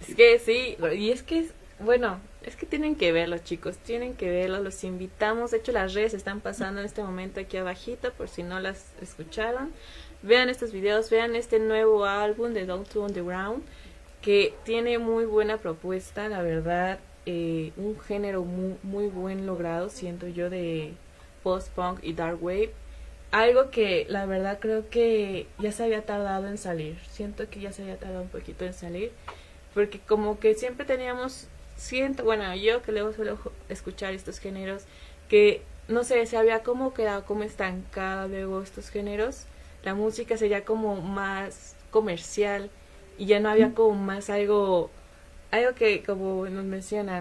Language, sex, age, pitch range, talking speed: Spanish, female, 20-39, 185-225 Hz, 170 wpm